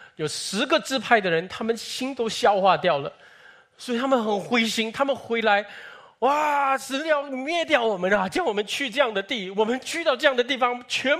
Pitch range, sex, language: 165-245 Hz, male, Chinese